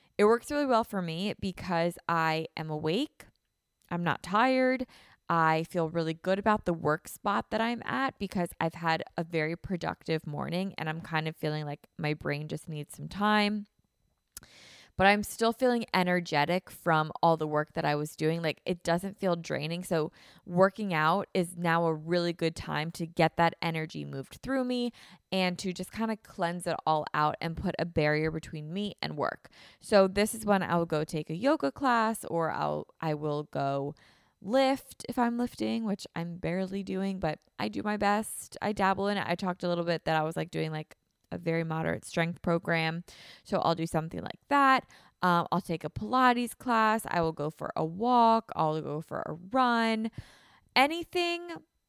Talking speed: 190 wpm